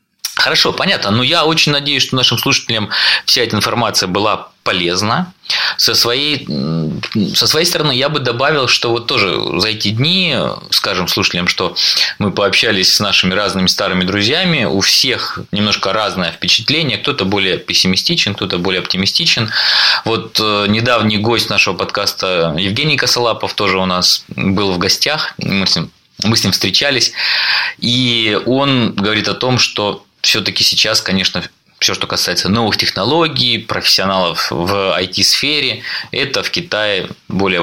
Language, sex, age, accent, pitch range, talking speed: Russian, male, 20-39, native, 95-120 Hz, 140 wpm